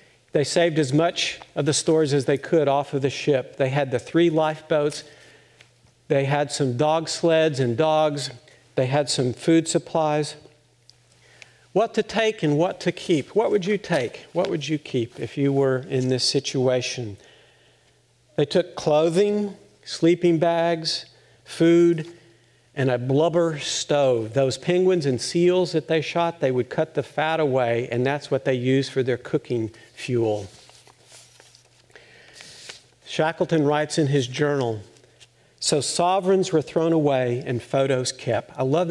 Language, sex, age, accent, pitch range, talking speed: English, male, 50-69, American, 130-170 Hz, 155 wpm